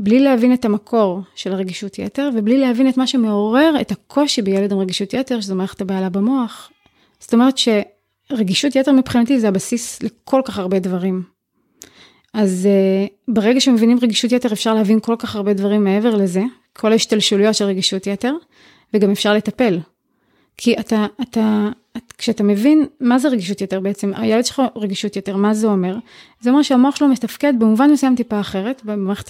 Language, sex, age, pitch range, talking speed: Hebrew, female, 30-49, 200-245 Hz, 165 wpm